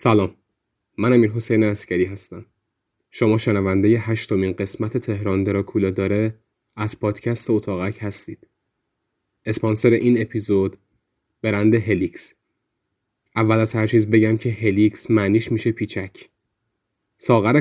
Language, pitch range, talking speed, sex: Persian, 105-120 Hz, 110 wpm, male